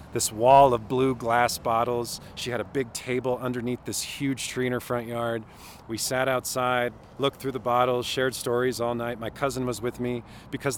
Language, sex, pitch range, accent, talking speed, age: English, male, 115-140 Hz, American, 200 wpm, 40-59